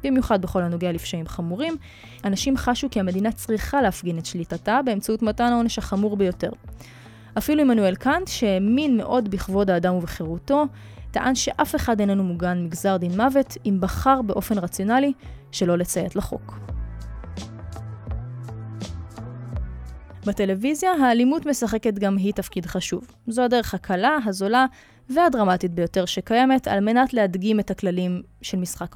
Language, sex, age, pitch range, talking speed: Hebrew, female, 20-39, 175-245 Hz, 130 wpm